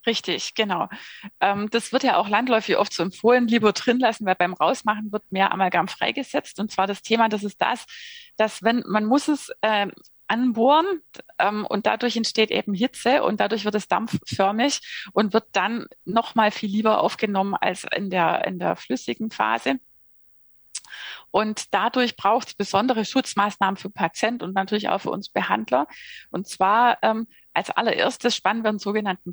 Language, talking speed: German, 170 wpm